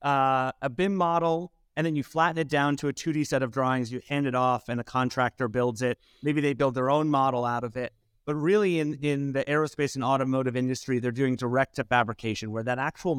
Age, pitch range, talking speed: 30-49, 125-150 Hz, 230 wpm